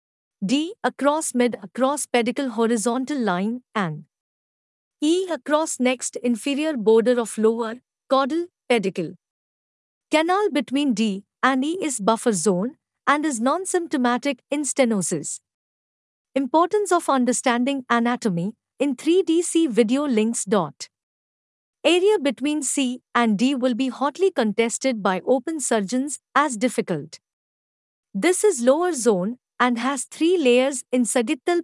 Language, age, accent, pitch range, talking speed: English, 50-69, Indian, 230-295 Hz, 120 wpm